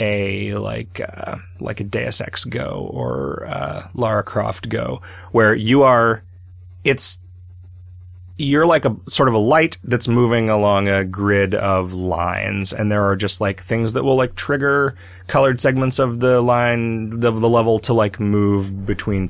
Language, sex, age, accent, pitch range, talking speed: English, male, 30-49, American, 90-115 Hz, 165 wpm